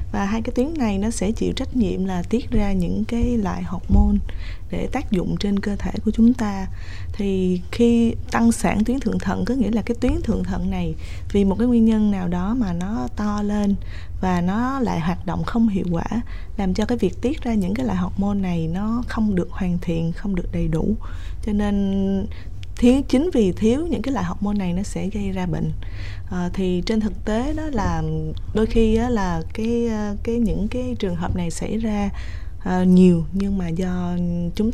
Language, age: Vietnamese, 20-39